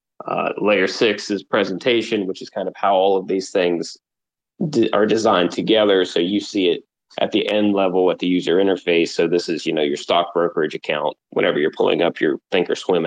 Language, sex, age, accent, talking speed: English, male, 20-39, American, 205 wpm